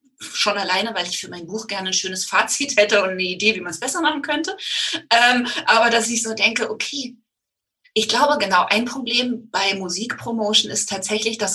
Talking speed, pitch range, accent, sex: 195 wpm, 190-250 Hz, German, female